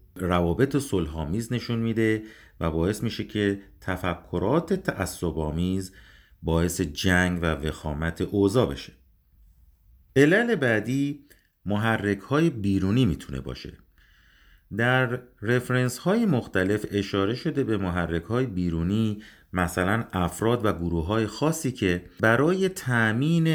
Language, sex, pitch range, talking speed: Persian, male, 90-125 Hz, 105 wpm